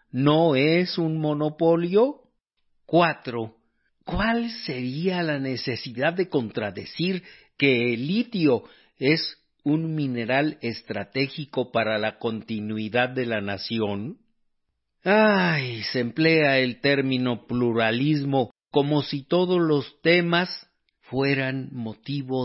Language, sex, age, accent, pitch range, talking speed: Spanish, male, 50-69, Mexican, 120-175 Hz, 100 wpm